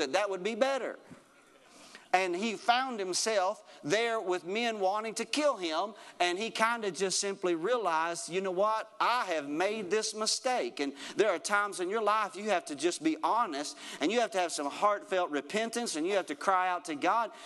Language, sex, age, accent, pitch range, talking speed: English, male, 40-59, American, 165-235 Hz, 205 wpm